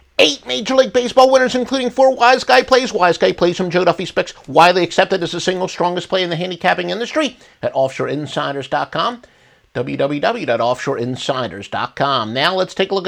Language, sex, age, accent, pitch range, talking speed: English, male, 50-69, American, 135-215 Hz, 165 wpm